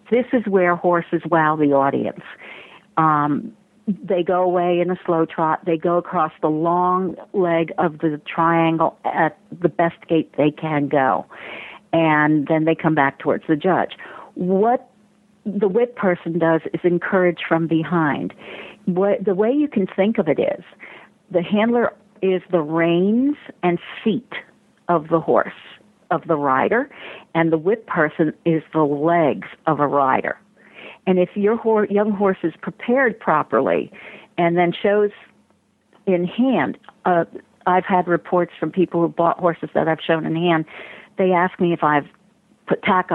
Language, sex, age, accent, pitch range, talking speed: English, female, 50-69, American, 160-200 Hz, 160 wpm